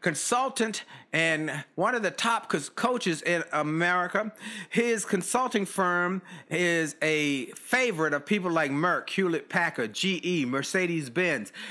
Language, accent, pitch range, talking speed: English, American, 160-215 Hz, 115 wpm